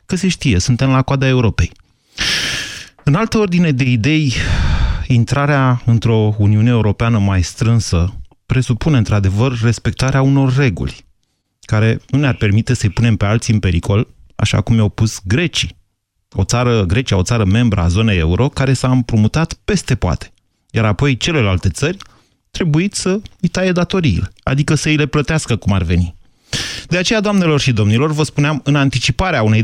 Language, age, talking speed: Romanian, 30-49, 160 wpm